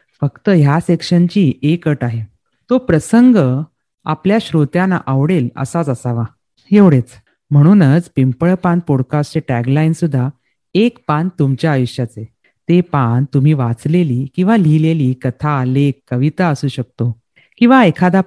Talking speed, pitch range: 120 wpm, 130-175 Hz